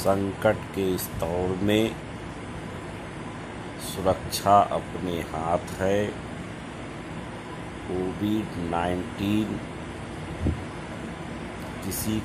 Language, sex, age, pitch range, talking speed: Hindi, male, 60-79, 85-105 Hz, 60 wpm